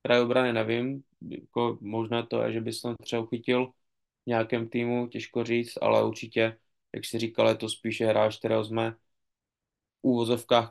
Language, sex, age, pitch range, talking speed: Czech, male, 20-39, 110-125 Hz, 150 wpm